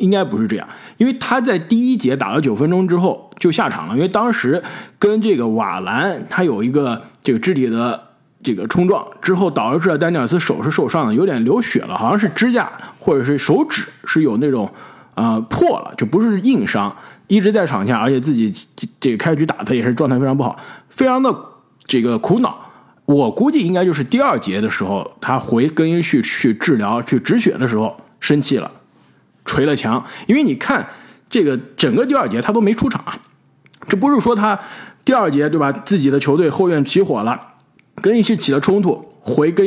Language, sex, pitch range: Chinese, male, 140-210 Hz